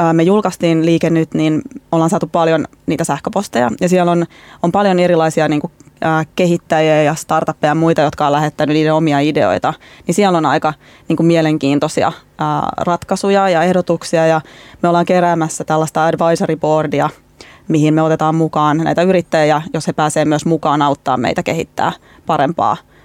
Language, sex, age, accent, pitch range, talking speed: Finnish, female, 20-39, native, 155-175 Hz, 165 wpm